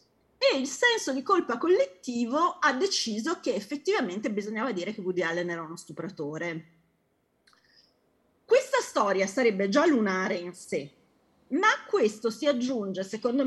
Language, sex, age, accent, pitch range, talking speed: Italian, female, 30-49, native, 190-270 Hz, 140 wpm